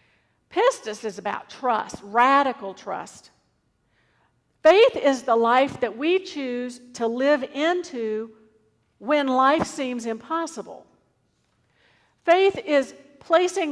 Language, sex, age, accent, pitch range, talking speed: English, female, 50-69, American, 220-320 Hz, 100 wpm